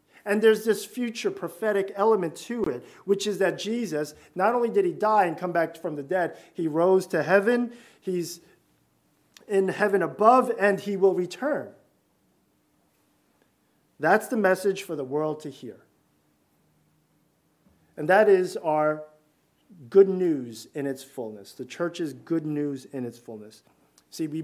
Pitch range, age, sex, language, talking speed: 140-185 Hz, 40-59, male, English, 150 wpm